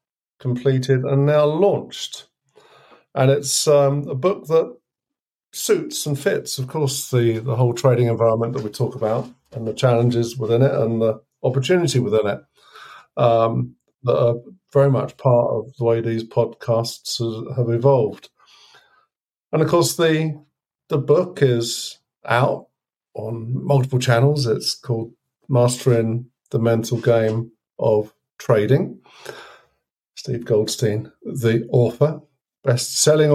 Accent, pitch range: British, 115-150 Hz